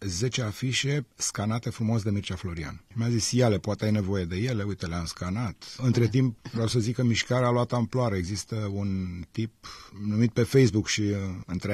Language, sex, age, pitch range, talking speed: Romanian, male, 30-49, 100-125 Hz, 190 wpm